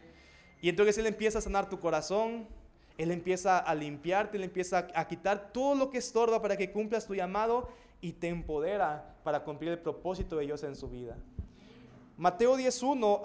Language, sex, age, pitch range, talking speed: Spanish, male, 20-39, 165-225 Hz, 175 wpm